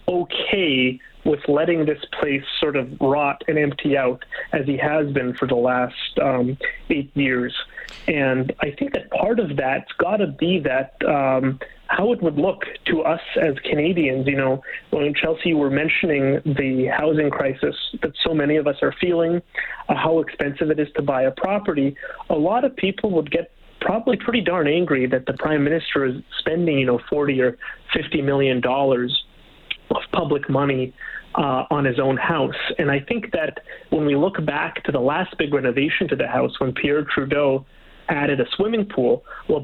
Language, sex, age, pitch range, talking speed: English, male, 30-49, 135-165 Hz, 185 wpm